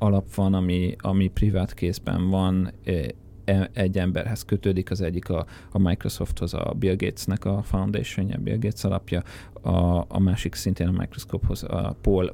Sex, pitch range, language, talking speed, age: male, 90-100 Hz, Hungarian, 155 wpm, 30-49